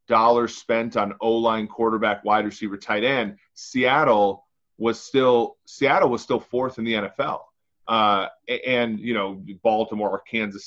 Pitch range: 100-125 Hz